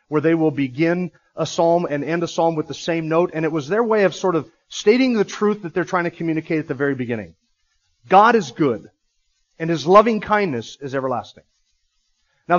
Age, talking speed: 40-59, 210 wpm